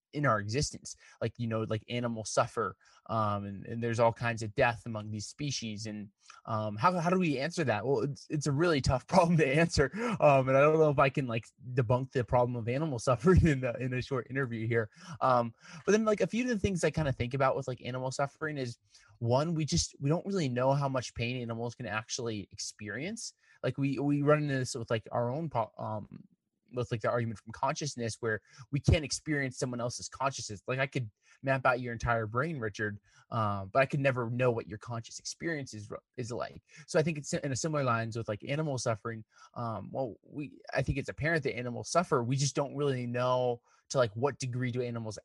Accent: American